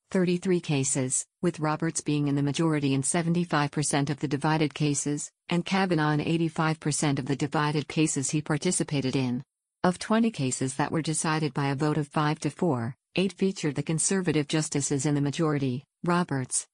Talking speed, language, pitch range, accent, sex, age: 170 wpm, English, 145-170 Hz, American, female, 50-69